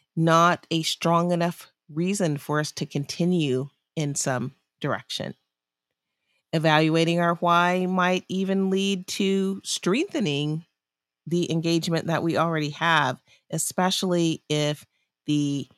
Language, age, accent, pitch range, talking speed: English, 40-59, American, 140-170 Hz, 110 wpm